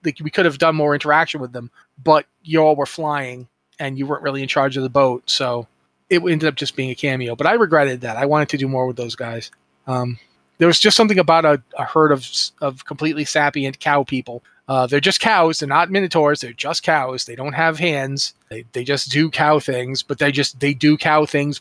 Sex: male